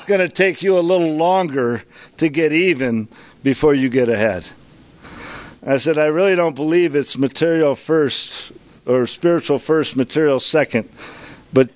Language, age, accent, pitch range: English, 50-69, American, 120-150 Hz